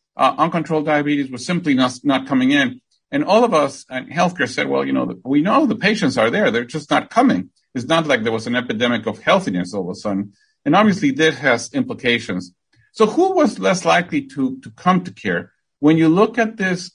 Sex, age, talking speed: male, 50-69, 220 wpm